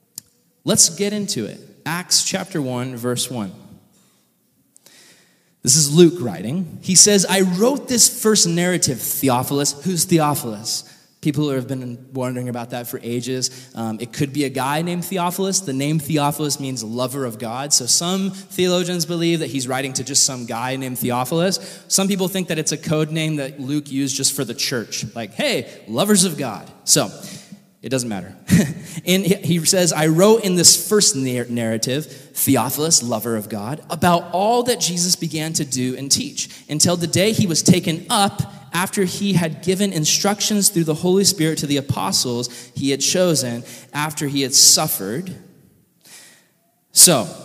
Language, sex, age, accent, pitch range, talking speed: English, male, 20-39, American, 130-180 Hz, 165 wpm